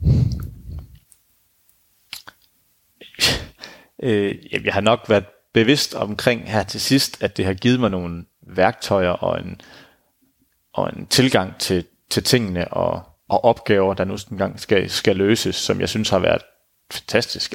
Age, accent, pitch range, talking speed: 30-49, native, 95-115 Hz, 130 wpm